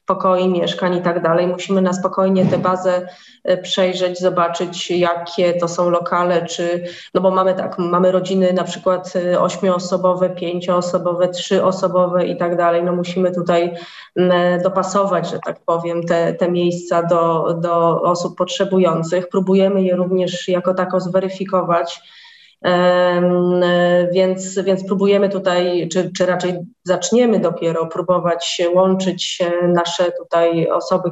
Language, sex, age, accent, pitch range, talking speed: Polish, female, 20-39, native, 175-185 Hz, 125 wpm